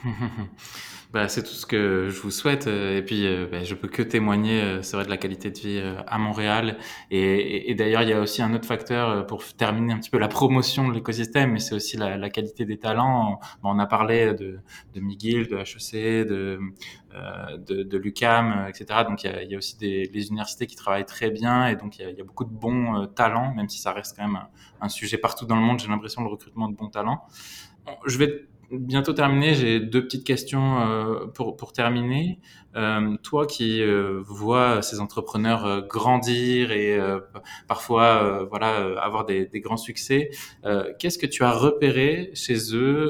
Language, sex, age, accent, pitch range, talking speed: French, male, 20-39, French, 100-120 Hz, 220 wpm